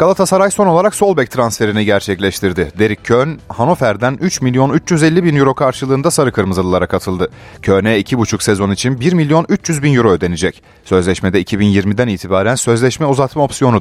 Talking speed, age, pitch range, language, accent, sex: 150 wpm, 30-49, 100-160 Hz, Turkish, native, male